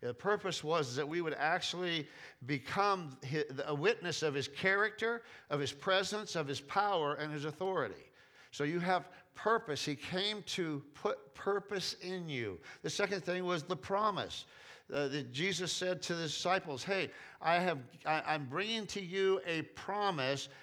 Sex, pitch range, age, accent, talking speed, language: male, 150-190 Hz, 50-69, American, 150 wpm, English